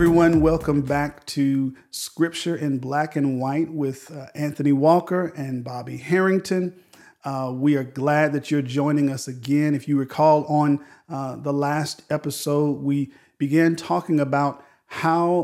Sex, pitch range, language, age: male, 140-155 Hz, English, 50-69